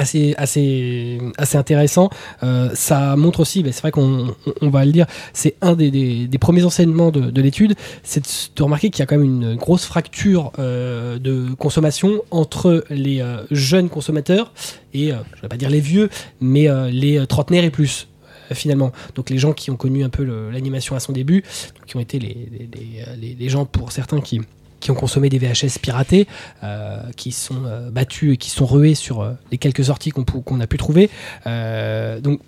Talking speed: 220 wpm